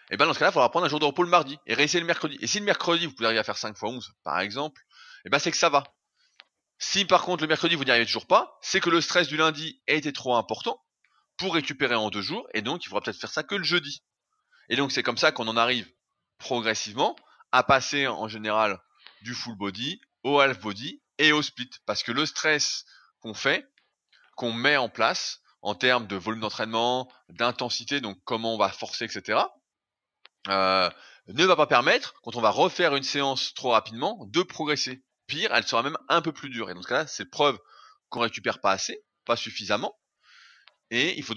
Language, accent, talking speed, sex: French, French, 230 wpm, male